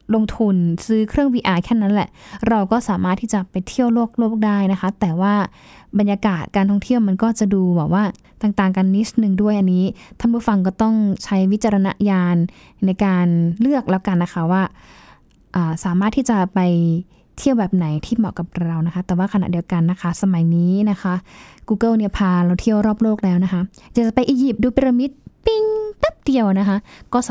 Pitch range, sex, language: 180-230 Hz, female, Thai